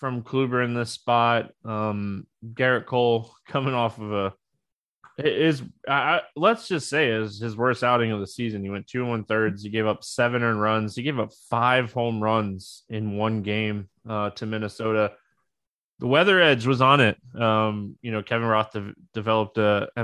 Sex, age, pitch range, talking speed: male, 20-39, 110-130 Hz, 185 wpm